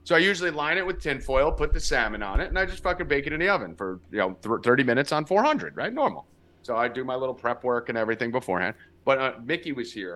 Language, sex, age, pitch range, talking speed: English, male, 30-49, 125-180 Hz, 280 wpm